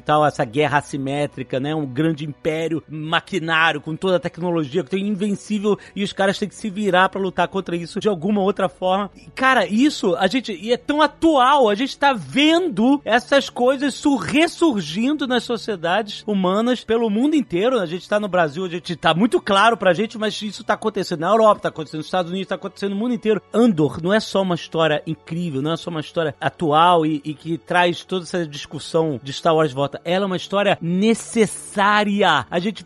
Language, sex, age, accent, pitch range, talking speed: Portuguese, male, 40-59, Brazilian, 175-260 Hz, 205 wpm